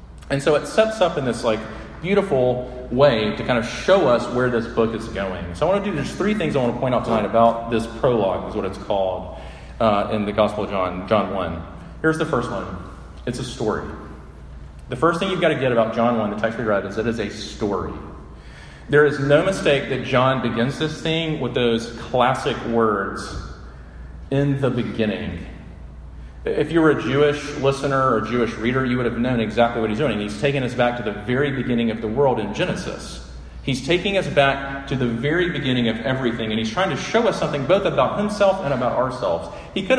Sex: male